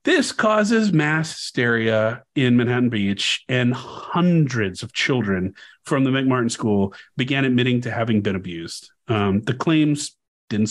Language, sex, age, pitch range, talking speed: English, male, 30-49, 120-155 Hz, 140 wpm